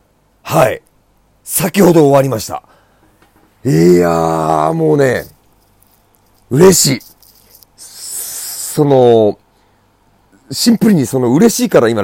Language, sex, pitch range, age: Japanese, male, 95-155 Hz, 40-59